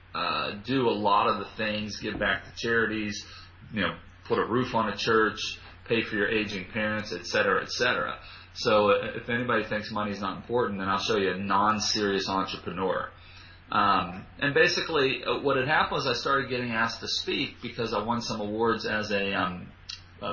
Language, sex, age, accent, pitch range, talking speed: English, male, 40-59, American, 100-120 Hz, 190 wpm